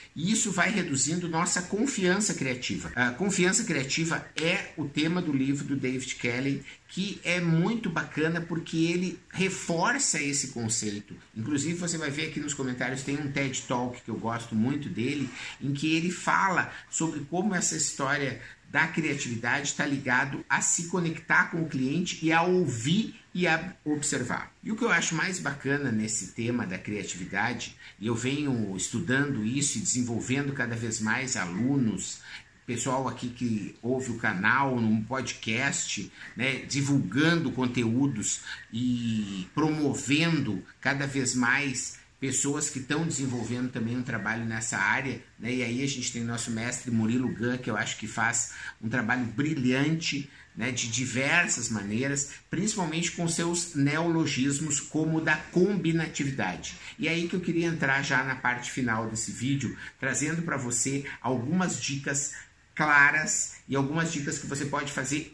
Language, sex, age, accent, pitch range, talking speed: Portuguese, male, 50-69, Brazilian, 125-160 Hz, 155 wpm